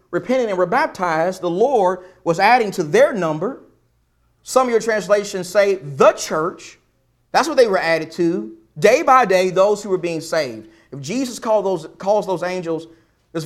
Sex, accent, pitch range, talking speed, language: male, American, 135-205 Hz, 170 wpm, English